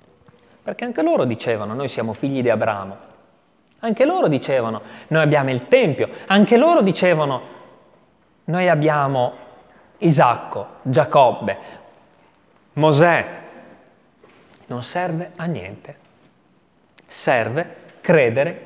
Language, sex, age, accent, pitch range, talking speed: Italian, male, 30-49, native, 130-210 Hz, 95 wpm